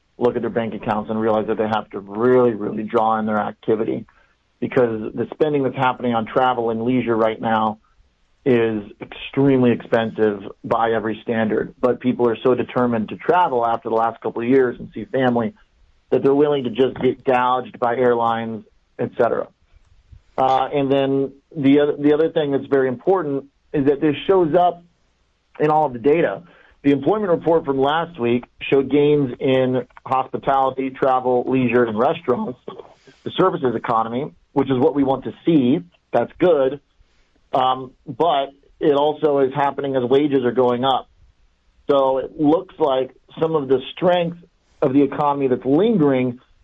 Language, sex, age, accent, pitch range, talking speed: English, male, 40-59, American, 115-140 Hz, 170 wpm